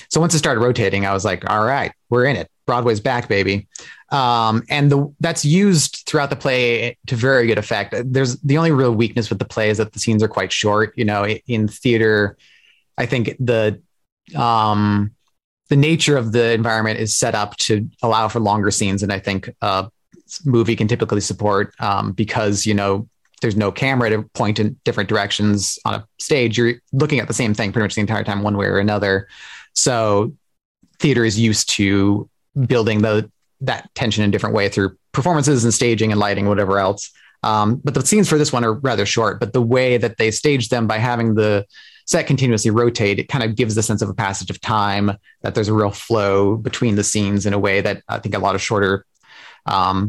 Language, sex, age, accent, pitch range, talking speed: English, male, 30-49, American, 105-125 Hz, 215 wpm